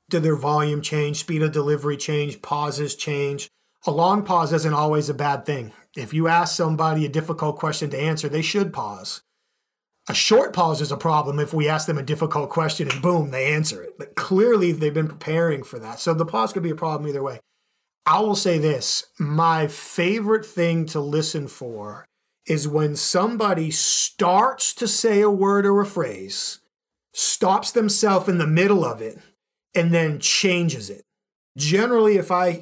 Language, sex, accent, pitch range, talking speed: English, male, American, 150-200 Hz, 180 wpm